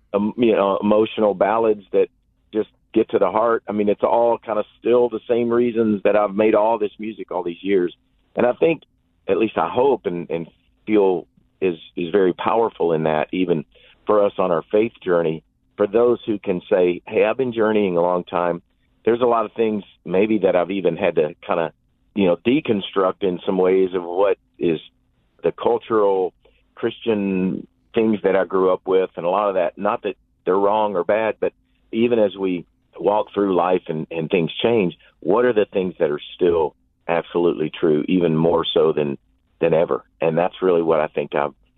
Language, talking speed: English, 200 wpm